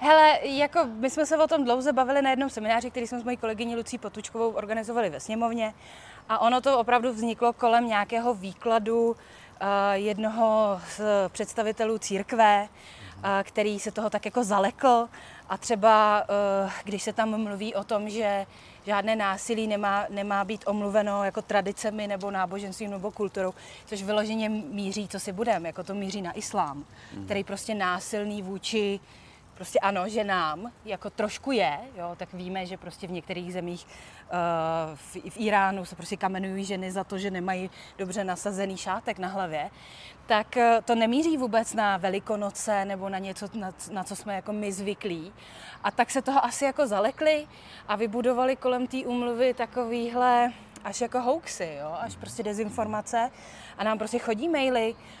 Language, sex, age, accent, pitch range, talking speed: Czech, female, 30-49, native, 195-235 Hz, 165 wpm